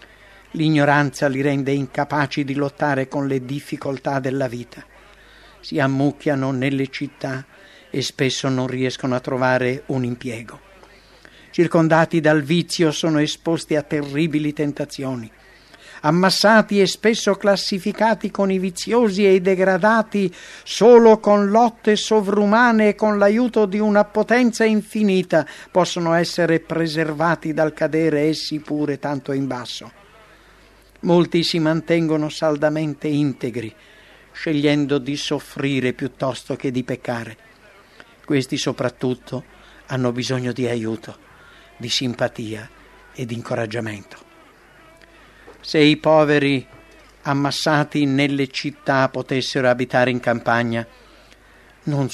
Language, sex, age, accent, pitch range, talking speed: English, male, 60-79, Italian, 130-170 Hz, 110 wpm